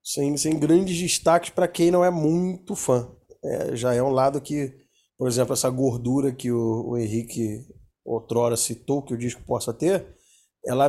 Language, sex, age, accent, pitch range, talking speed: Portuguese, male, 20-39, Brazilian, 125-175 Hz, 175 wpm